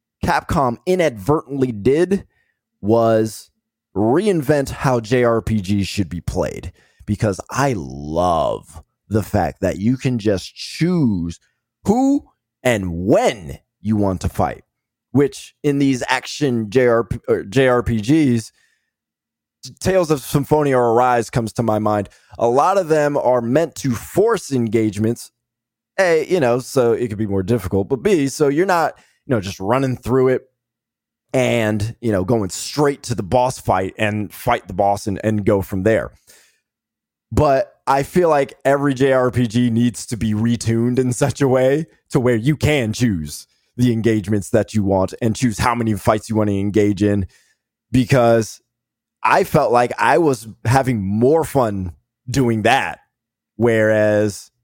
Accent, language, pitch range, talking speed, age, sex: American, English, 105-130 Hz, 145 wpm, 20-39, male